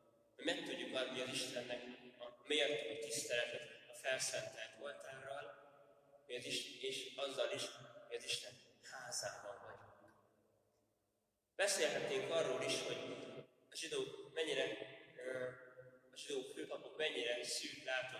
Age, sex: 20-39, male